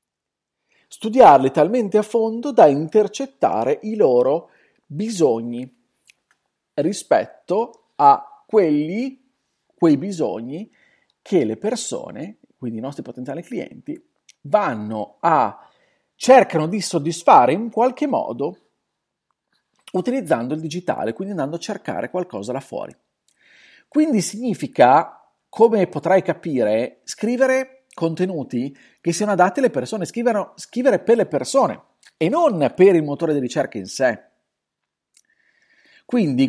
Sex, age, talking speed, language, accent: male, 40-59, 110 wpm, Italian, native